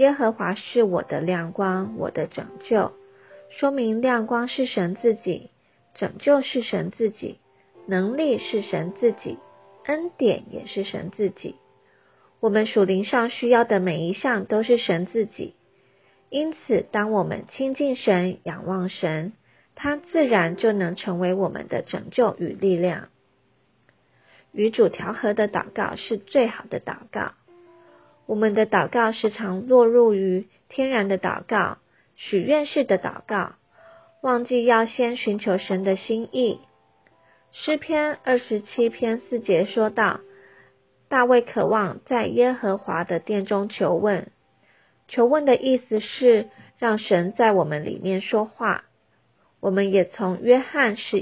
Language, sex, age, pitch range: Chinese, female, 30-49, 190-245 Hz